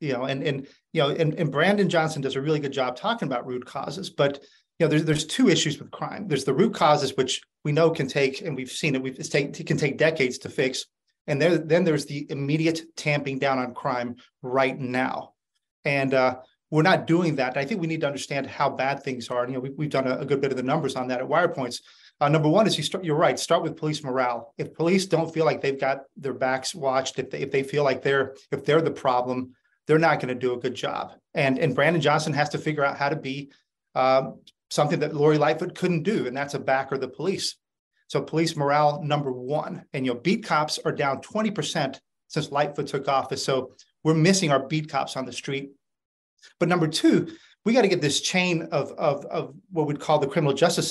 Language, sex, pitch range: English, male, 135-160 Hz